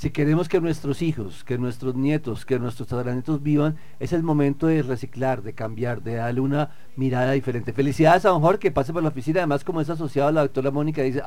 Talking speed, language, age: 225 wpm, Spanish, 40-59